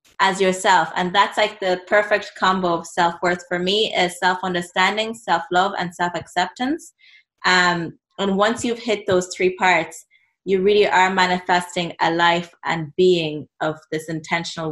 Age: 20-39